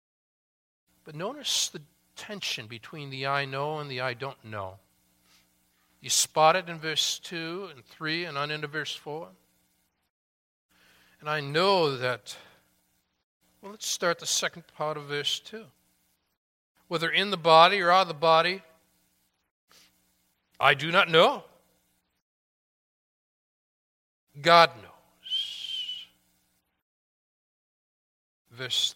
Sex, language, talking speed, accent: male, English, 115 wpm, American